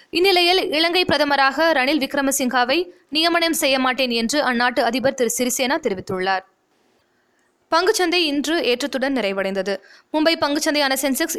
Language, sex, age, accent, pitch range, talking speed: Tamil, female, 20-39, native, 250-330 Hz, 110 wpm